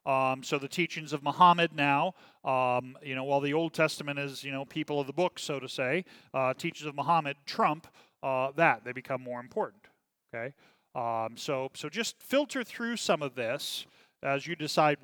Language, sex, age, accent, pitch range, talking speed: English, male, 40-59, American, 140-180 Hz, 190 wpm